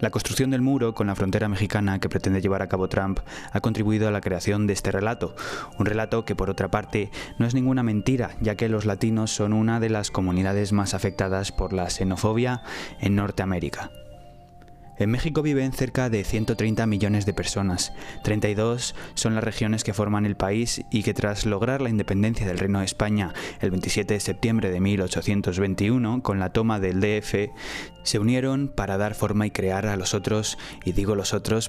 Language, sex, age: English, male, 20-39